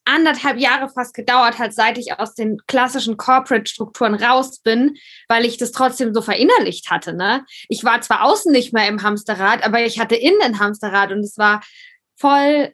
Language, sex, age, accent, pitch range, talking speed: German, female, 20-39, German, 215-260 Hz, 180 wpm